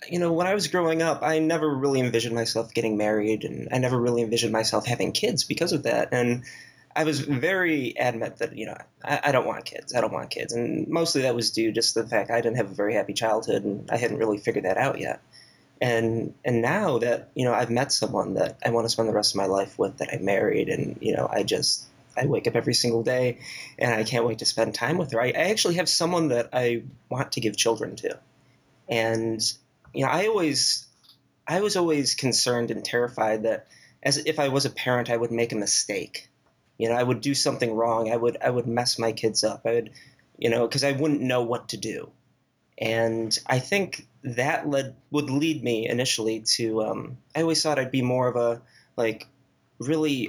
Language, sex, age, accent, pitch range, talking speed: English, male, 20-39, American, 115-140 Hz, 230 wpm